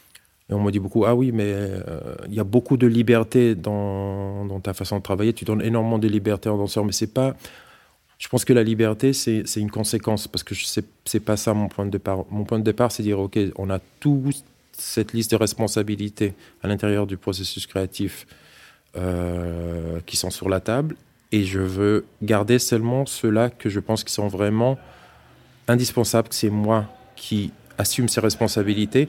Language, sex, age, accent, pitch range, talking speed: French, male, 40-59, French, 100-120 Hz, 205 wpm